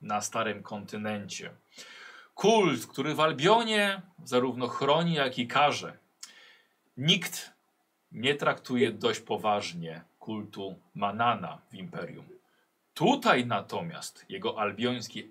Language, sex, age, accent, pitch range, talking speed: Polish, male, 40-59, native, 105-155 Hz, 100 wpm